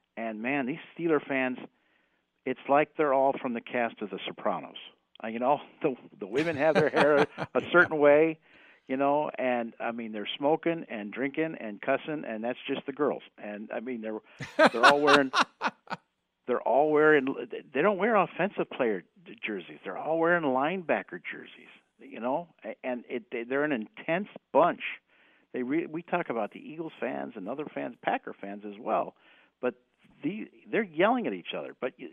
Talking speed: 175 wpm